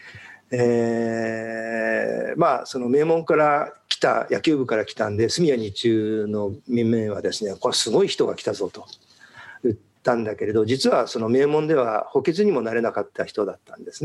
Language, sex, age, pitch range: Japanese, male, 50-69, 110-165 Hz